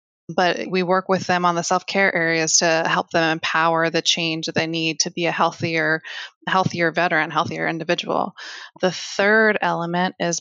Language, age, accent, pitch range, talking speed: English, 20-39, American, 170-200 Hz, 175 wpm